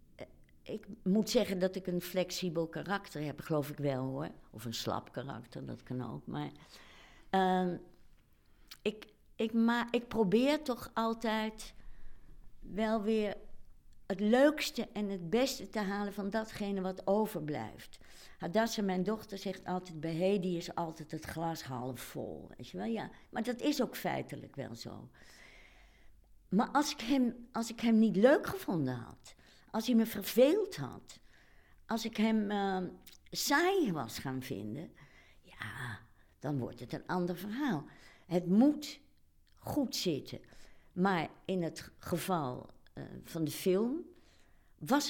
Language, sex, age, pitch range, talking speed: Dutch, female, 60-79, 135-220 Hz, 145 wpm